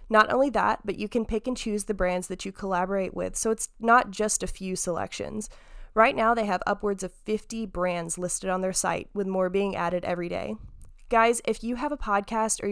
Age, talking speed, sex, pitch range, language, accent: 20-39, 220 wpm, female, 185-230 Hz, English, American